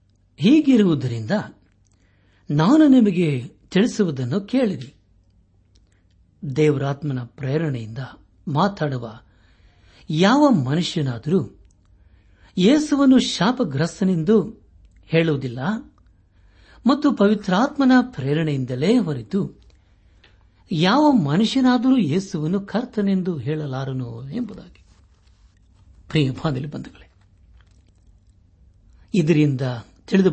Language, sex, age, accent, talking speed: Kannada, male, 60-79, native, 45 wpm